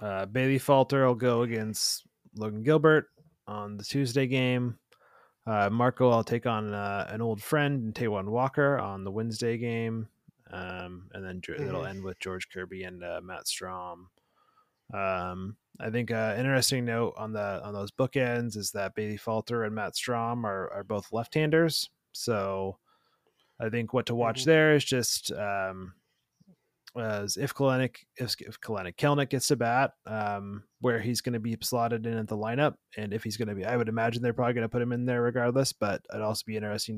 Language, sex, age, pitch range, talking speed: English, male, 20-39, 105-125 Hz, 185 wpm